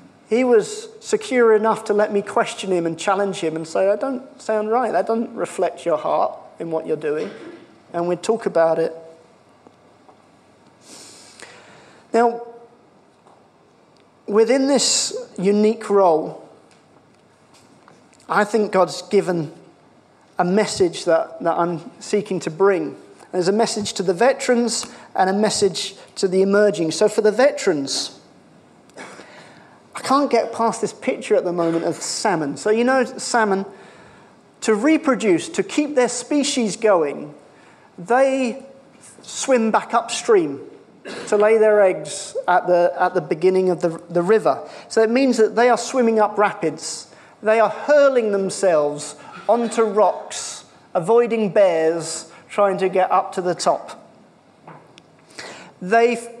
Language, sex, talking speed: English, male, 135 wpm